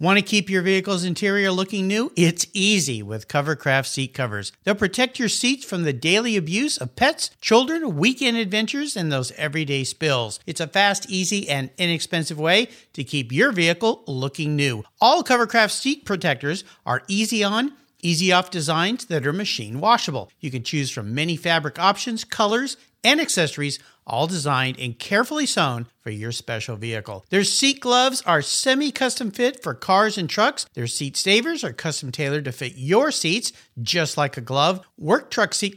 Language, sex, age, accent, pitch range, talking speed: English, male, 50-69, American, 145-220 Hz, 175 wpm